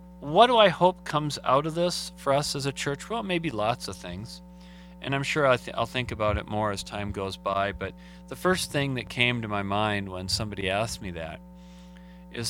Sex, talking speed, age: male, 215 wpm, 40-59